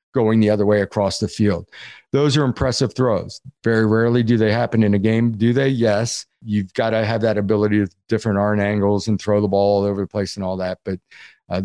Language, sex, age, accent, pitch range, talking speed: English, male, 50-69, American, 100-130 Hz, 230 wpm